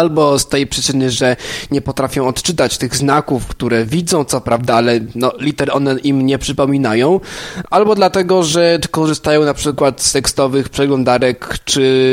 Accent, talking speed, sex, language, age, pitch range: native, 150 wpm, male, Polish, 20-39, 125-145 Hz